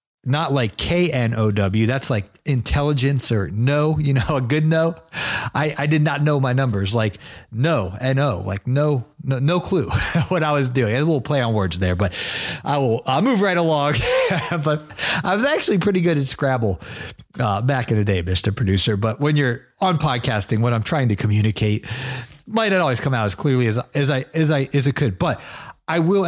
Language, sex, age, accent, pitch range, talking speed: English, male, 30-49, American, 120-150 Hz, 210 wpm